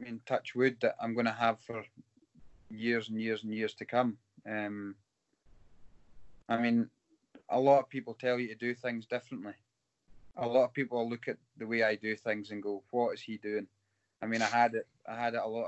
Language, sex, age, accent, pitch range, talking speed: English, male, 20-39, British, 105-120 Hz, 215 wpm